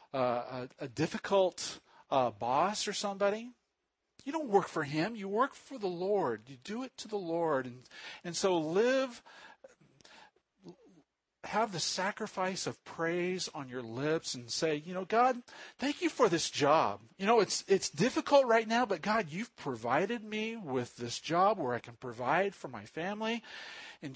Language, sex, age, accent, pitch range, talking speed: English, male, 50-69, American, 130-195 Hz, 170 wpm